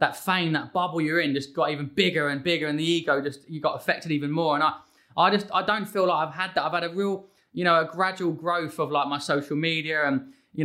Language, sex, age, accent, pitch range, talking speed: English, male, 20-39, British, 145-175 Hz, 270 wpm